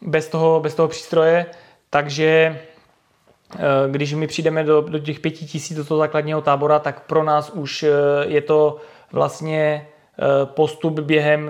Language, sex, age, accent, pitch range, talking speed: Czech, male, 20-39, native, 150-165 Hz, 140 wpm